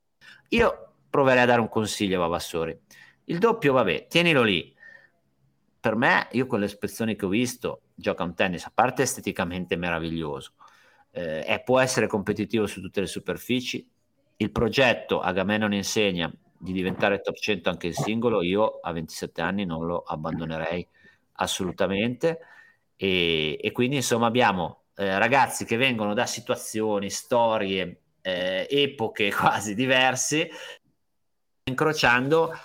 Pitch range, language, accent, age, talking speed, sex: 90-120 Hz, Italian, native, 50-69, 140 wpm, male